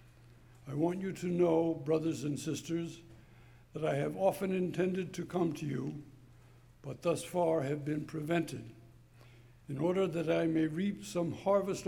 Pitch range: 125-175 Hz